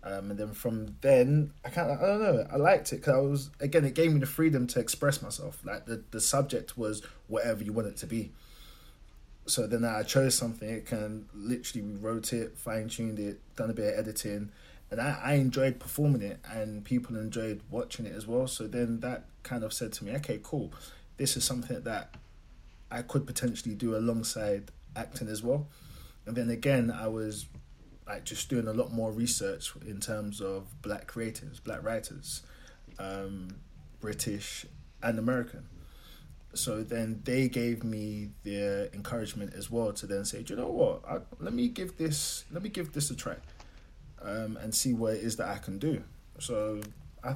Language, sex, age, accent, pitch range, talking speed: English, male, 20-39, British, 105-130 Hz, 190 wpm